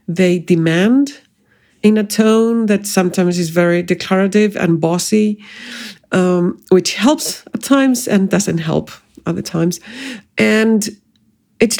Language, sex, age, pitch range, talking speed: English, female, 50-69, 175-220 Hz, 120 wpm